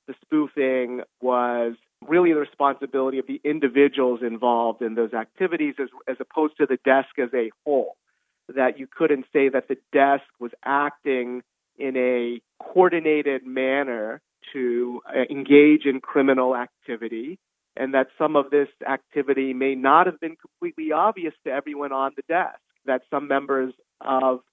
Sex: male